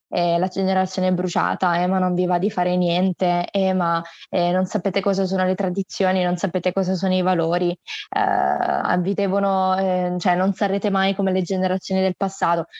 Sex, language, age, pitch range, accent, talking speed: female, Italian, 20-39, 175-195 Hz, native, 185 wpm